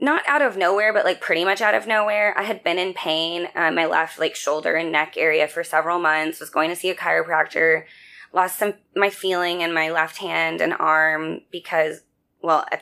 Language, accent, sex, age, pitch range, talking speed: English, American, female, 20-39, 160-190 Hz, 215 wpm